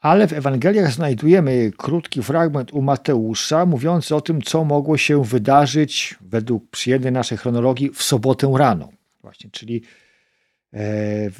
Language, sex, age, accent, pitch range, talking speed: Polish, male, 50-69, native, 125-175 Hz, 130 wpm